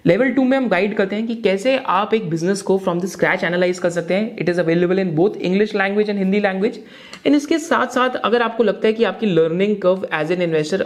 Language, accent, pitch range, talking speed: Hindi, native, 180-240 Hz, 250 wpm